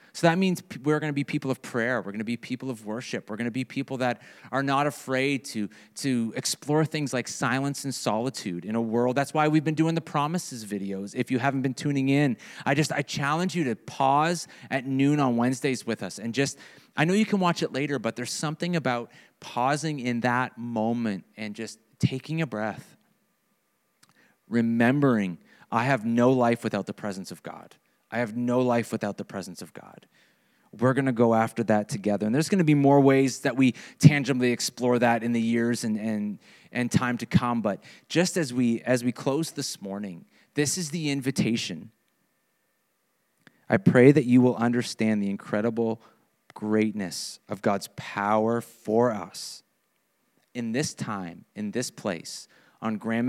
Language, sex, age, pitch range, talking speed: English, male, 30-49, 110-140 Hz, 190 wpm